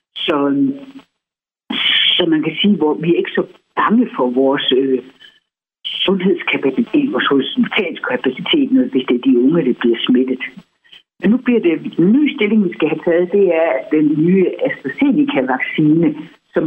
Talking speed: 150 wpm